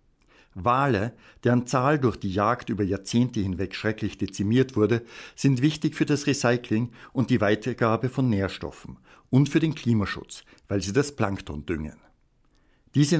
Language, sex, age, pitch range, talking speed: German, male, 60-79, 105-130 Hz, 145 wpm